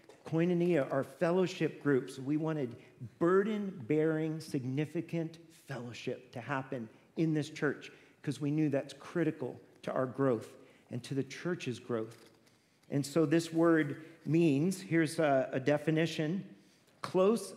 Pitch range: 135-165 Hz